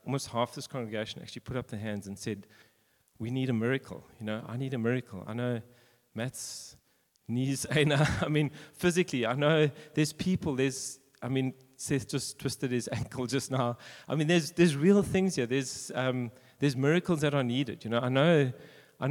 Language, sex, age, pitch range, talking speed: English, male, 40-59, 110-140 Hz, 190 wpm